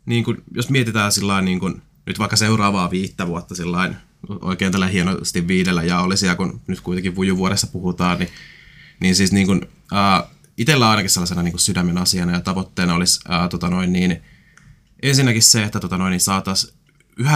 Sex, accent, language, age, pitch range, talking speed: male, native, Finnish, 20-39, 90-105 Hz, 165 wpm